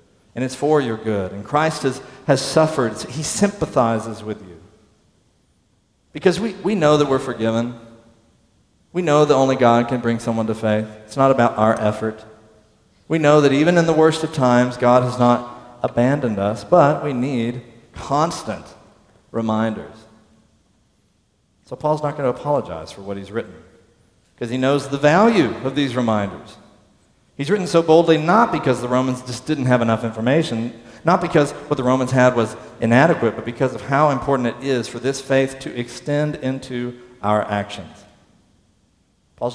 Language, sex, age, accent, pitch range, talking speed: English, male, 40-59, American, 110-135 Hz, 165 wpm